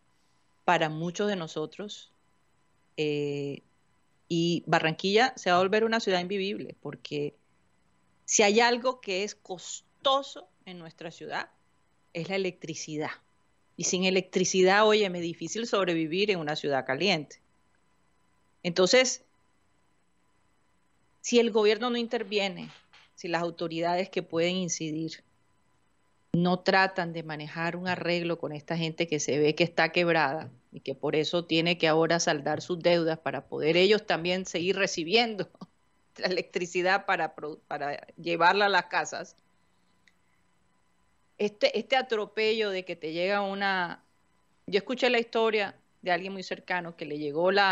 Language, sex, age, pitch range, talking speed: Spanish, female, 30-49, 160-200 Hz, 135 wpm